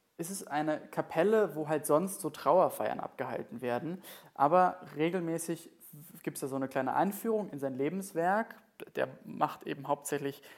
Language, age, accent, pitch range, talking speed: German, 20-39, German, 135-180 Hz, 160 wpm